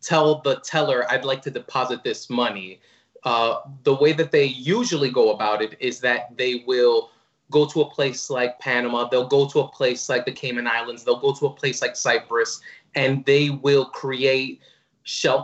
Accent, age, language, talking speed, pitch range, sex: American, 20-39, English, 190 wpm, 125-150 Hz, male